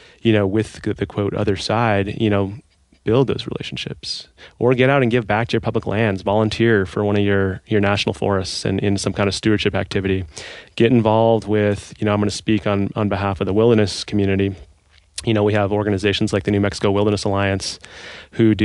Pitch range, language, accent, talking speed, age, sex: 100-110 Hz, English, American, 215 wpm, 30-49, male